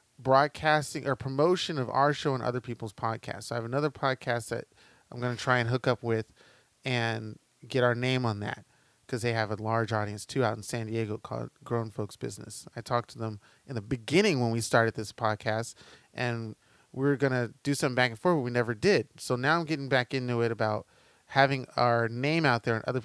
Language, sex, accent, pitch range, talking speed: English, male, American, 115-140 Hz, 220 wpm